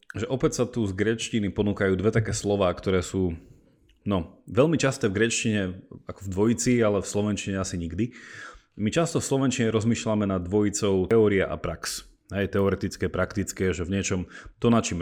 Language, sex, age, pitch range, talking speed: Slovak, male, 30-49, 95-115 Hz, 175 wpm